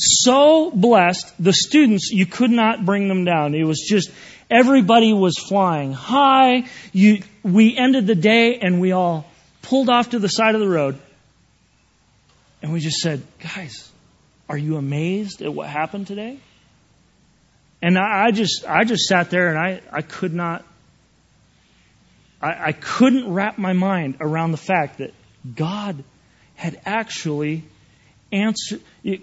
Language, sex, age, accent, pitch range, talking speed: English, male, 40-59, American, 160-245 Hz, 145 wpm